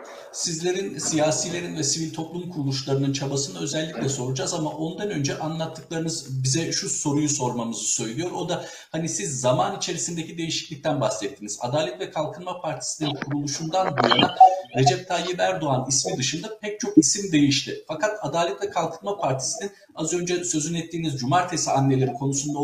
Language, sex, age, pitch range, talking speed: Turkish, male, 50-69, 140-195 Hz, 140 wpm